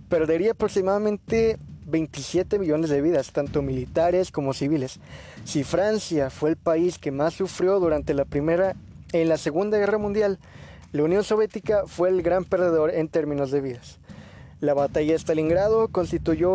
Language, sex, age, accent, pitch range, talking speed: Spanish, male, 20-39, Mexican, 145-185 Hz, 150 wpm